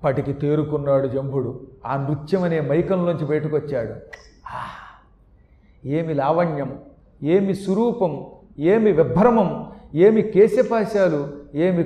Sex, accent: male, native